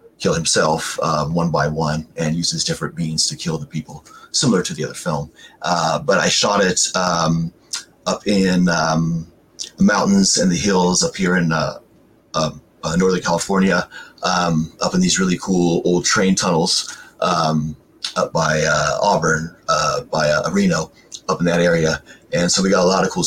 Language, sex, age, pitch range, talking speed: English, male, 30-49, 85-115 Hz, 185 wpm